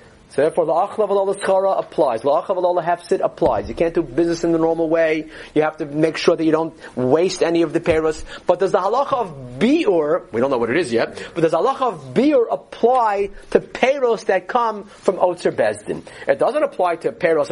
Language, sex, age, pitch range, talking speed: English, male, 40-59, 165-255 Hz, 210 wpm